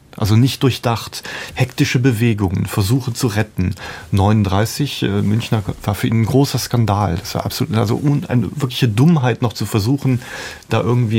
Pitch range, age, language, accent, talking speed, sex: 100-120 Hz, 40-59, German, German, 160 wpm, male